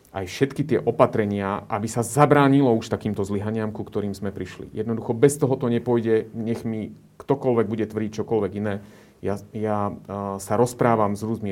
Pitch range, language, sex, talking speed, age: 100-130 Hz, Slovak, male, 165 wpm, 30-49